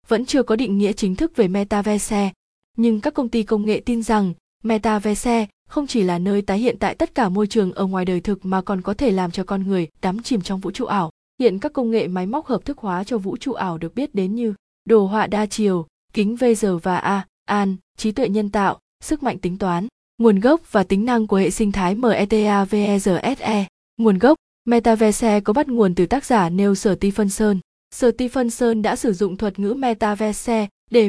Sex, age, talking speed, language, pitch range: female, 20-39, 210 wpm, Vietnamese, 195-230 Hz